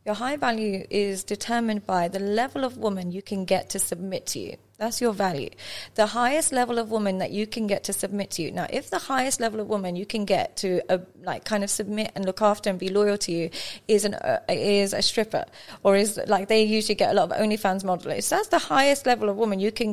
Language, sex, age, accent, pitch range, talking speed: English, female, 30-49, British, 195-240 Hz, 250 wpm